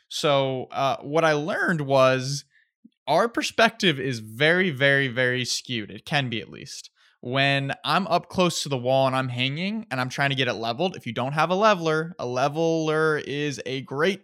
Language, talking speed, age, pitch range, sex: English, 195 wpm, 20-39, 130-165 Hz, male